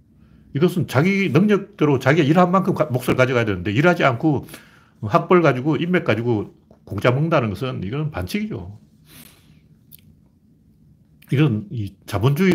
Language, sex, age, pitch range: Korean, male, 40-59, 105-145 Hz